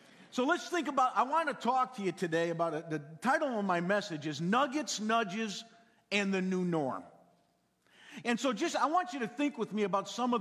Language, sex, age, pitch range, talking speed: English, male, 50-69, 195-255 Hz, 220 wpm